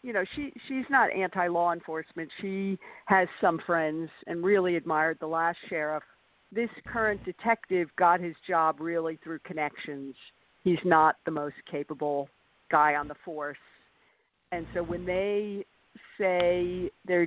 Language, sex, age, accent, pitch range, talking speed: English, female, 50-69, American, 160-190 Hz, 145 wpm